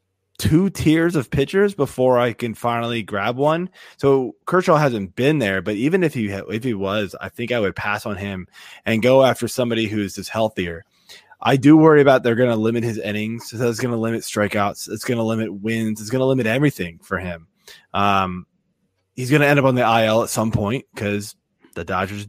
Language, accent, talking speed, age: English, American, 215 wpm, 20-39